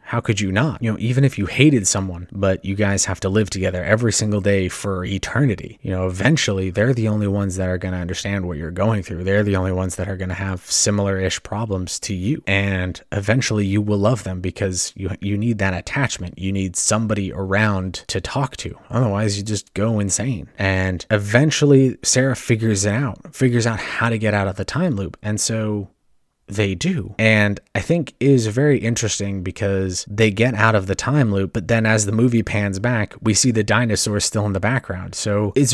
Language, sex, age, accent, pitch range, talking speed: English, male, 30-49, American, 95-115 Hz, 210 wpm